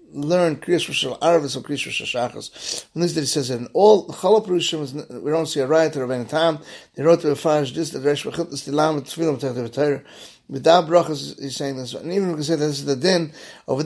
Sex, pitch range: male, 135-165 Hz